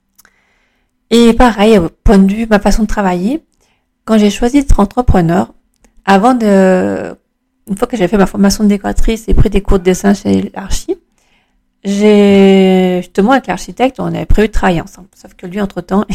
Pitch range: 185-215 Hz